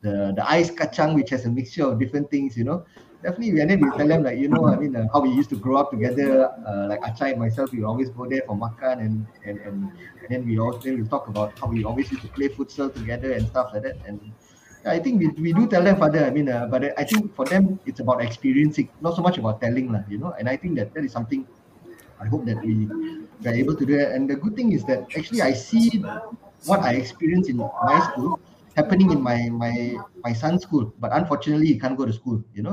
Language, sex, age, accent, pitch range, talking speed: English, male, 20-39, Malaysian, 115-155 Hz, 260 wpm